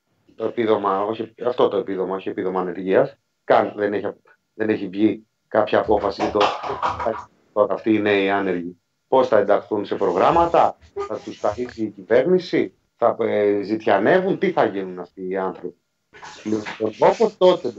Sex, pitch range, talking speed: male, 110-160 Hz, 150 wpm